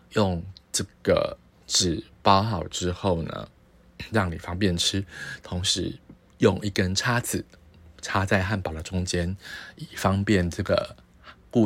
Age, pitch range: 20-39, 85-100 Hz